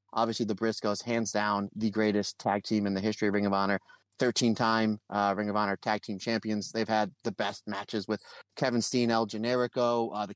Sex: male